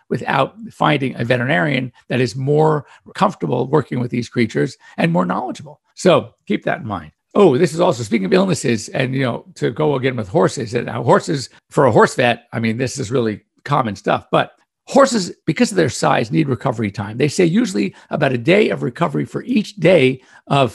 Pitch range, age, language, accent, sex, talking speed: 130-175 Hz, 50-69, English, American, male, 200 wpm